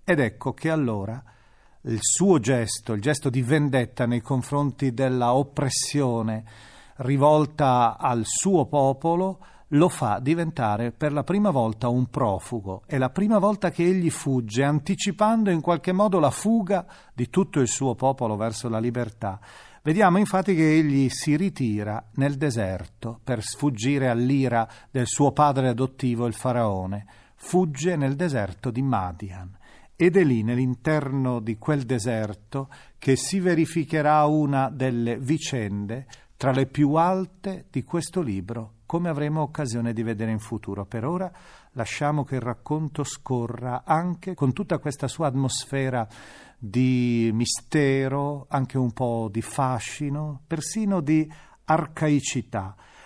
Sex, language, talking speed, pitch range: male, Italian, 135 wpm, 120-155 Hz